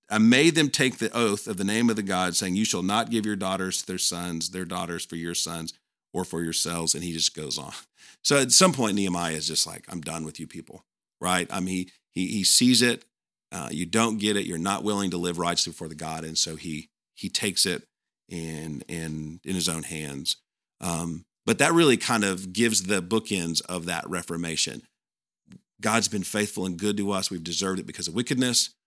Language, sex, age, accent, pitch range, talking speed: English, male, 50-69, American, 85-120 Hz, 220 wpm